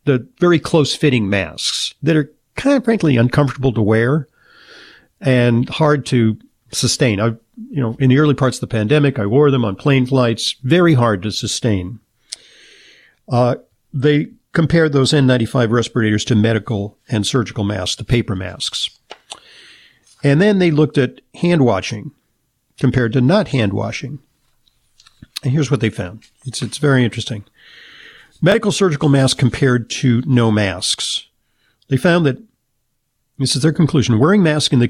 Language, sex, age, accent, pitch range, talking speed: English, male, 50-69, American, 115-140 Hz, 145 wpm